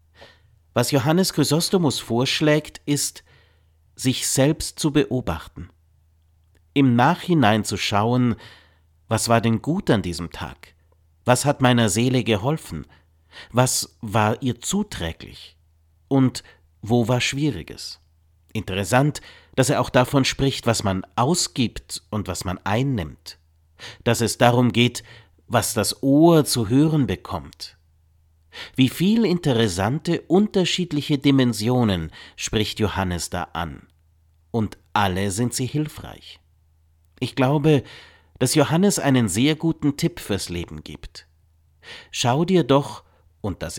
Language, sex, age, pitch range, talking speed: German, male, 50-69, 85-135 Hz, 120 wpm